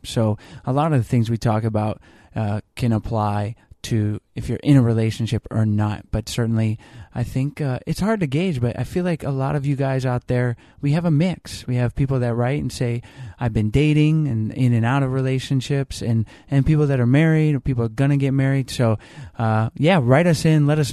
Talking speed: 230 wpm